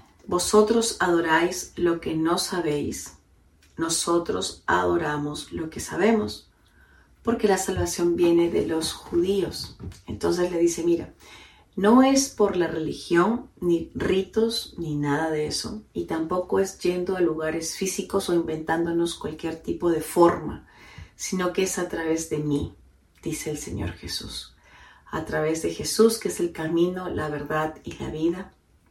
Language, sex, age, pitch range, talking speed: Spanish, female, 40-59, 155-190 Hz, 145 wpm